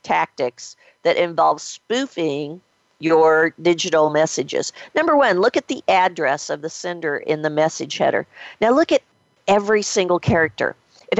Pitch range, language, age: 160-225 Hz, English, 50-69